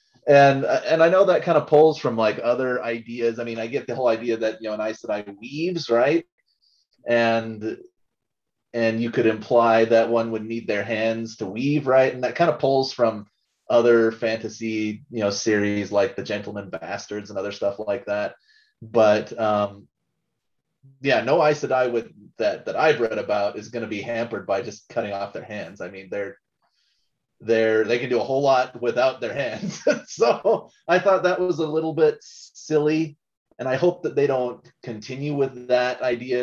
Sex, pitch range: male, 110-135 Hz